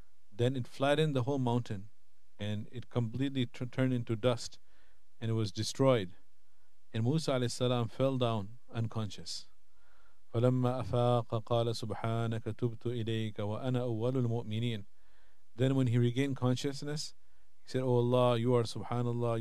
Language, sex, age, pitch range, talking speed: English, male, 50-69, 110-130 Hz, 100 wpm